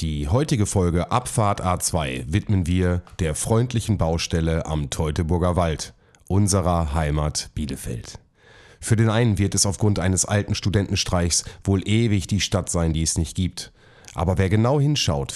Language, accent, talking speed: German, German, 150 wpm